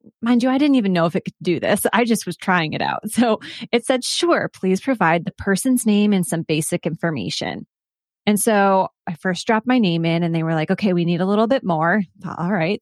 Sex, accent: female, American